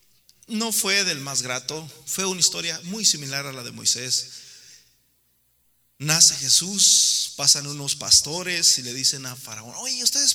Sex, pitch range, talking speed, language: male, 135-205 Hz, 150 wpm, Spanish